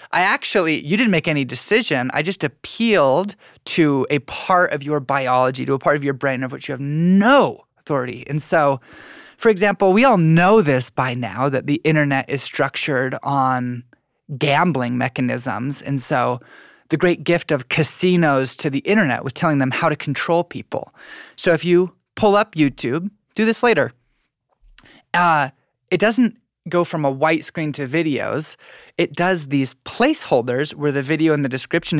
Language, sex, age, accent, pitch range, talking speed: English, male, 20-39, American, 140-180 Hz, 175 wpm